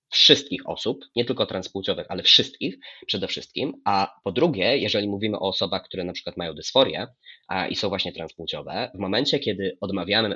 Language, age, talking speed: Polish, 20-39, 175 wpm